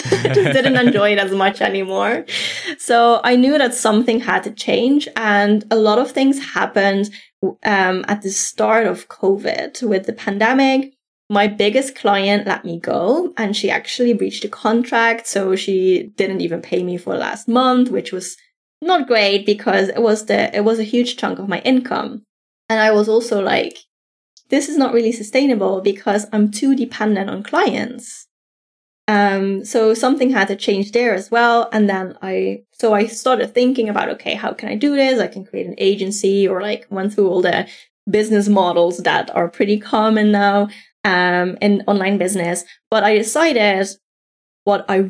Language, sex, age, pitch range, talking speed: English, female, 10-29, 200-245 Hz, 180 wpm